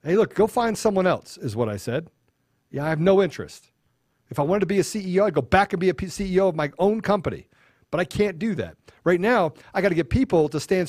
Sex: male